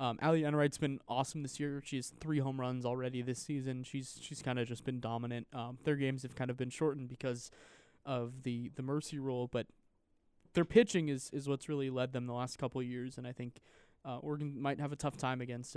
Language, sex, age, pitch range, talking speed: English, male, 20-39, 125-150 Hz, 230 wpm